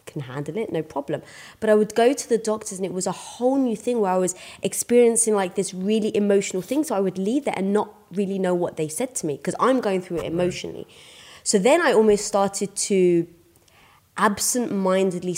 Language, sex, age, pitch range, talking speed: English, female, 20-39, 165-210 Hz, 215 wpm